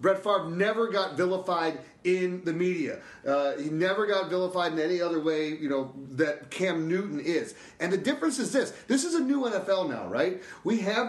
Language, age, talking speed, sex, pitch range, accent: English, 40-59, 200 wpm, male, 180-235 Hz, American